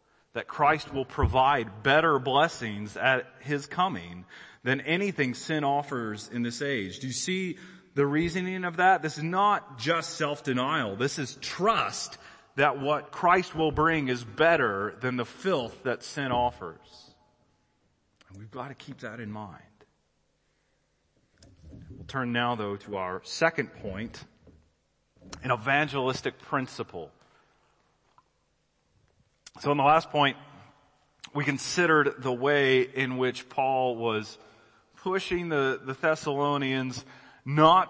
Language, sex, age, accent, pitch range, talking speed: English, male, 30-49, American, 120-155 Hz, 130 wpm